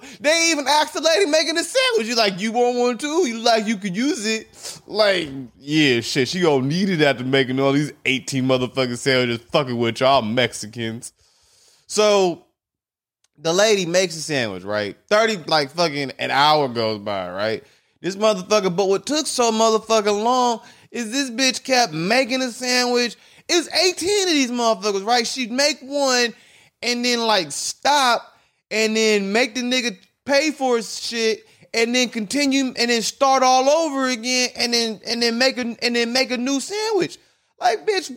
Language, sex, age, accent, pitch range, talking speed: English, male, 20-39, American, 185-280 Hz, 180 wpm